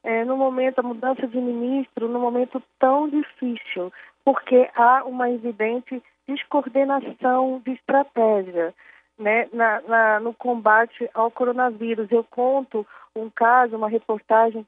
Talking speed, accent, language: 125 wpm, Brazilian, Portuguese